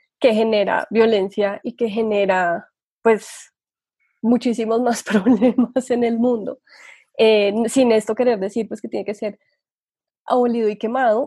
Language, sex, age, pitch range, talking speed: Spanish, female, 20-39, 215-245 Hz, 140 wpm